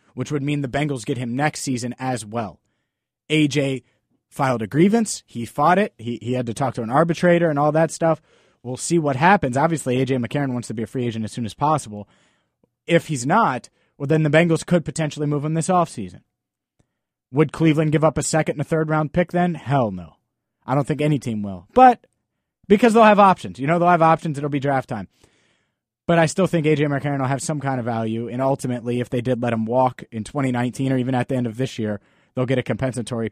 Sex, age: male, 30-49